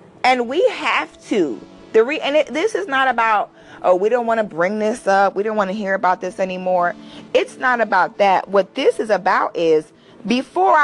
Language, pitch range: English, 200-265 Hz